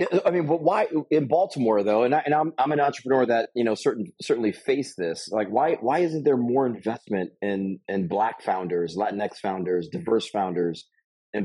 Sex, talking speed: male, 195 wpm